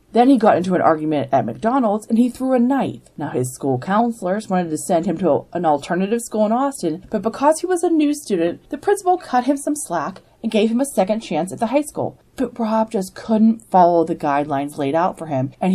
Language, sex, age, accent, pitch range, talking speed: English, female, 30-49, American, 150-215 Hz, 235 wpm